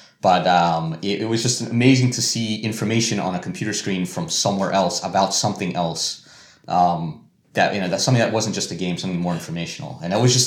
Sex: male